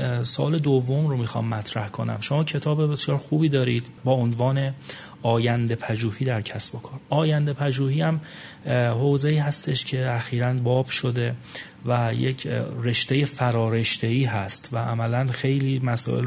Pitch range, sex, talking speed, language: 115-140 Hz, male, 135 wpm, Persian